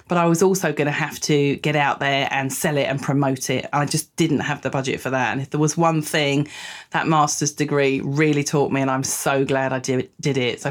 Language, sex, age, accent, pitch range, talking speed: English, female, 30-49, British, 140-200 Hz, 250 wpm